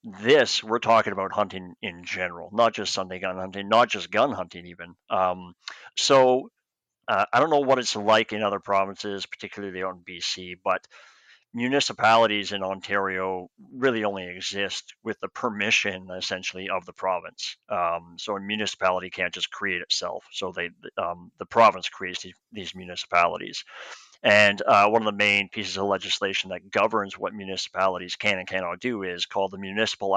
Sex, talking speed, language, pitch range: male, 165 wpm, English, 90-110 Hz